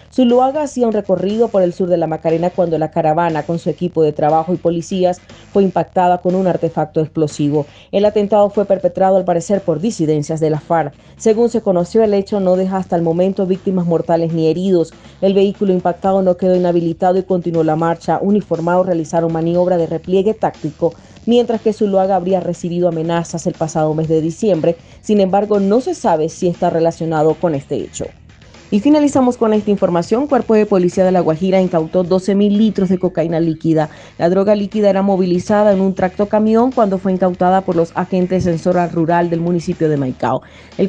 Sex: female